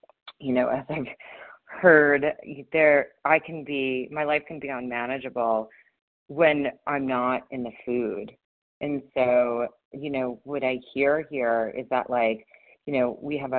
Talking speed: 155 wpm